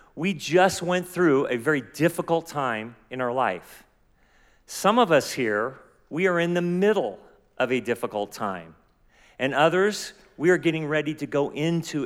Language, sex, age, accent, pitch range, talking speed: English, male, 40-59, American, 125-165 Hz, 165 wpm